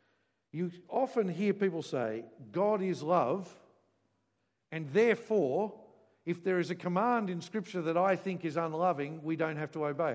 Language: English